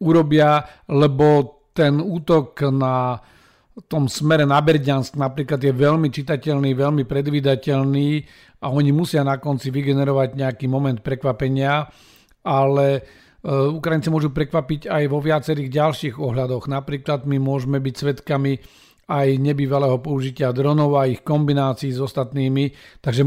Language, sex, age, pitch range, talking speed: Slovak, male, 50-69, 130-150 Hz, 125 wpm